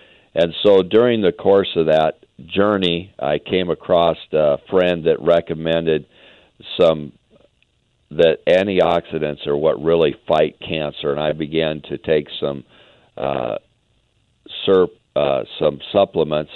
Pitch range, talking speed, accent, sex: 75-90 Hz, 125 wpm, American, male